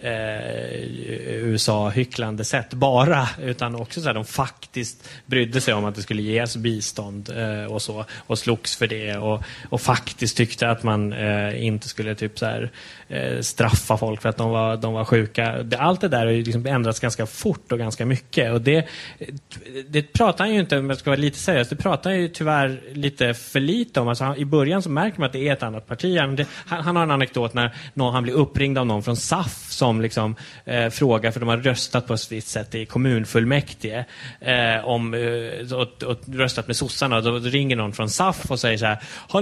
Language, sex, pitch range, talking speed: Swedish, male, 115-140 Hz, 215 wpm